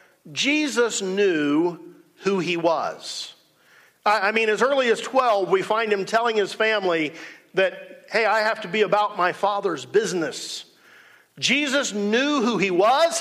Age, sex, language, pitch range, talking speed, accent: 50-69, male, English, 165-225 Hz, 145 wpm, American